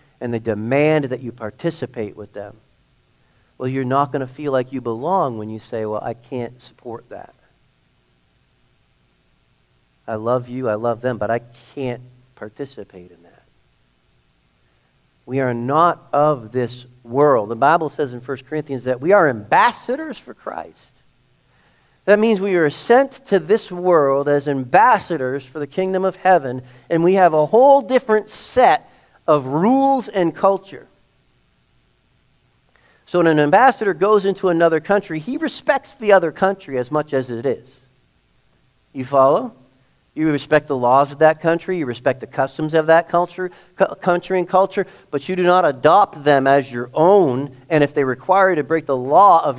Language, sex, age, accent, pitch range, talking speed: English, male, 50-69, American, 125-185 Hz, 165 wpm